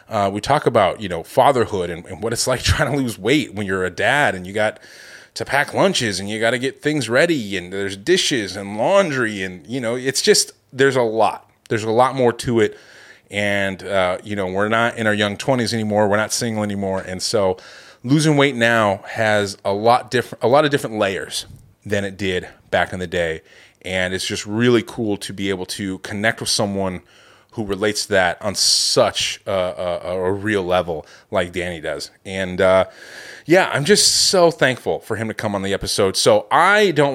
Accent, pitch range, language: American, 100-130 Hz, English